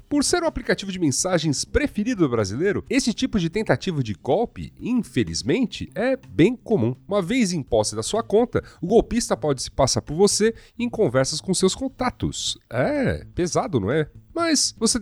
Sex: male